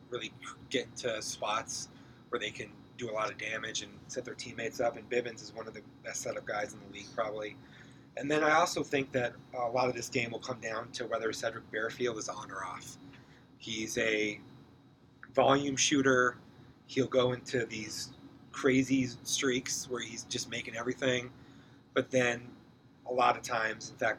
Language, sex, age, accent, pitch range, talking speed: English, male, 30-49, American, 115-135 Hz, 190 wpm